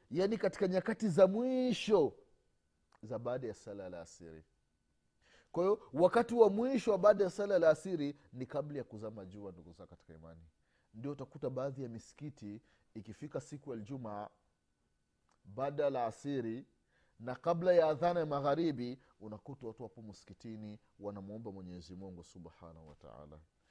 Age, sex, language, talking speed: 30-49, male, Swahili, 140 wpm